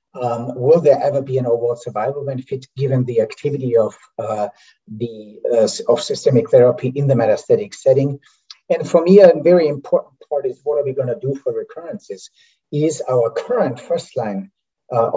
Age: 50-69